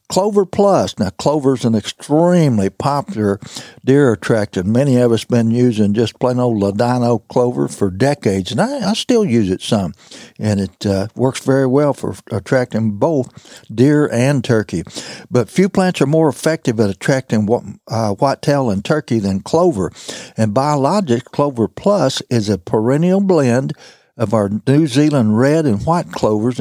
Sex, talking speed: male, 165 wpm